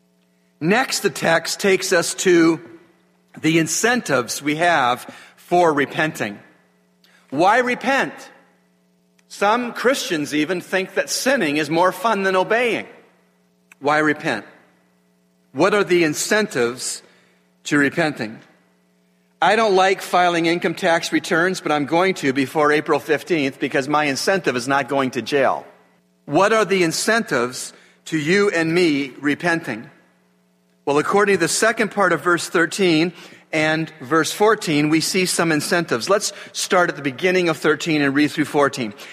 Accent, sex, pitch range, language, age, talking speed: American, male, 140-190 Hz, English, 40-59, 140 wpm